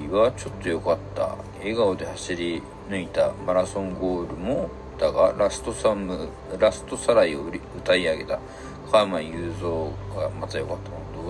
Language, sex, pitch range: Japanese, male, 85-105 Hz